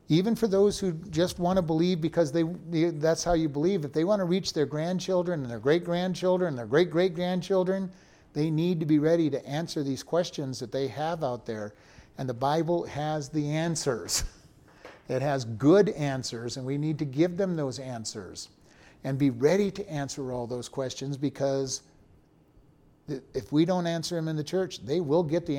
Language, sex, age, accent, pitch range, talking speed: English, male, 50-69, American, 140-185 Hz, 190 wpm